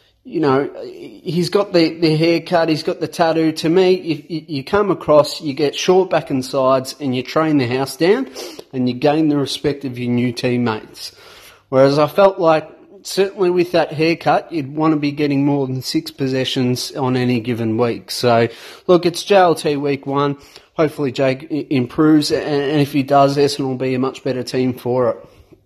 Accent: Australian